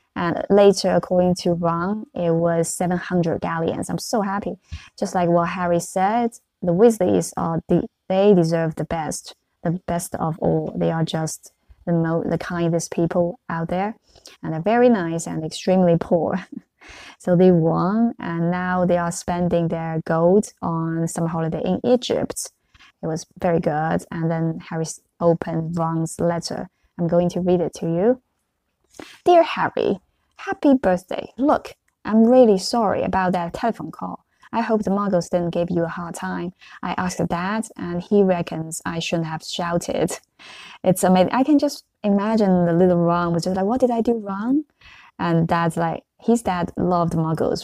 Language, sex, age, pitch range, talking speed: English, female, 20-39, 165-205 Hz, 170 wpm